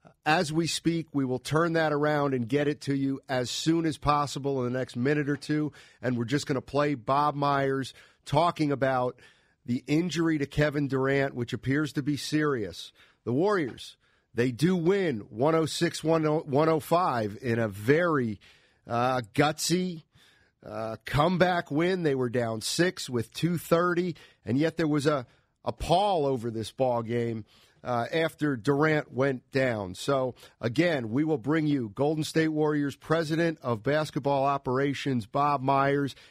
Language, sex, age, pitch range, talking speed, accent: English, male, 50-69, 125-155 Hz, 155 wpm, American